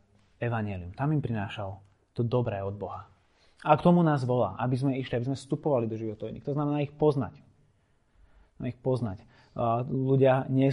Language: Slovak